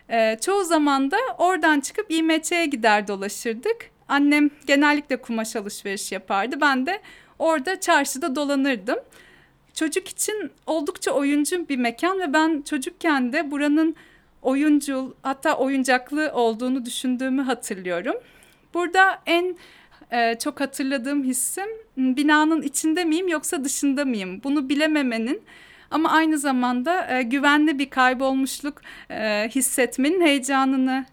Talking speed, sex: 115 wpm, female